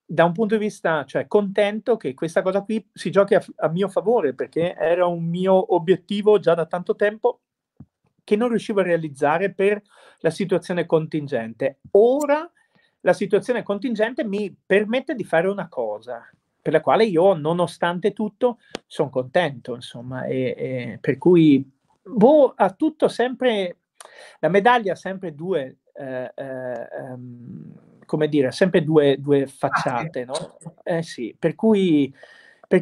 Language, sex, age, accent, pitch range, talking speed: Italian, male, 40-59, native, 145-205 Hz, 150 wpm